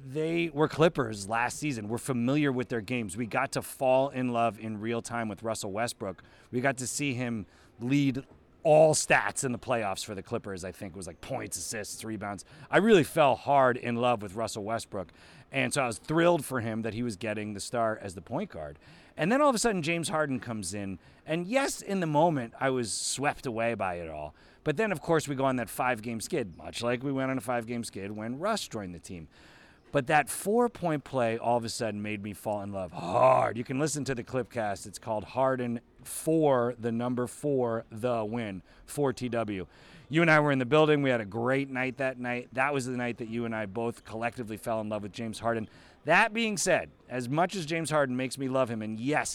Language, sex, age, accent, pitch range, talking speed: English, male, 30-49, American, 110-140 Hz, 235 wpm